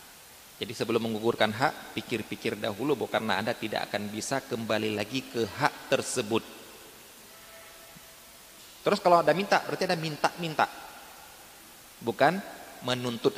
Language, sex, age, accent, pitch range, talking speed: Indonesian, male, 30-49, native, 115-150 Hz, 115 wpm